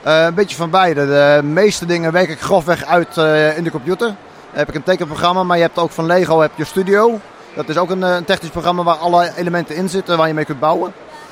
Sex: male